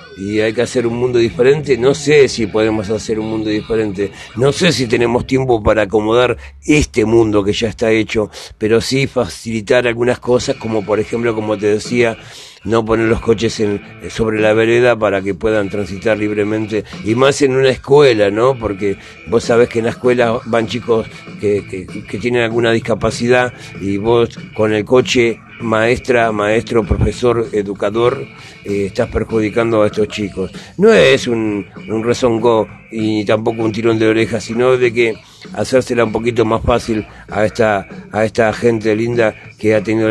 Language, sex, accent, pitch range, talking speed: Spanish, male, Argentinian, 110-120 Hz, 175 wpm